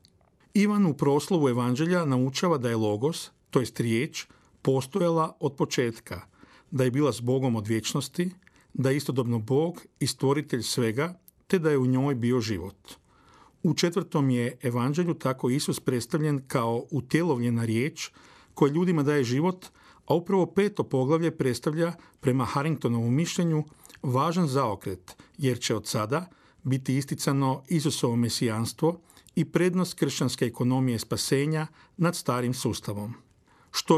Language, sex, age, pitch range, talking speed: Croatian, male, 50-69, 125-165 Hz, 135 wpm